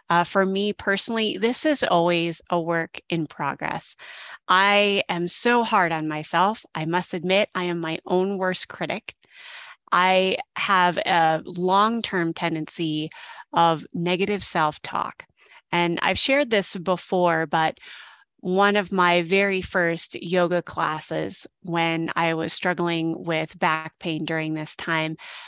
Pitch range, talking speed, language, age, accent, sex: 165-195 Hz, 135 wpm, English, 30-49, American, female